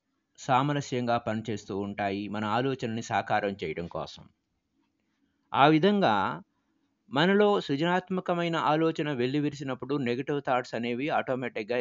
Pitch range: 115-150 Hz